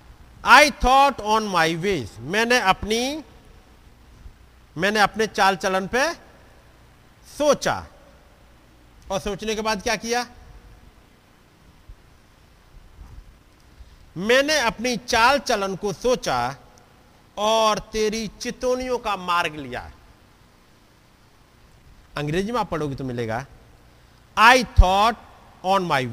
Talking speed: 95 wpm